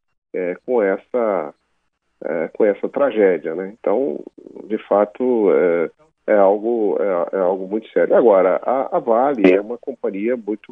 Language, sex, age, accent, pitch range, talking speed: Portuguese, male, 50-69, Brazilian, 95-130 Hz, 150 wpm